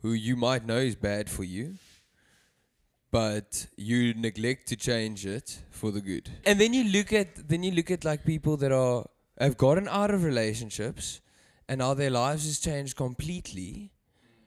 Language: English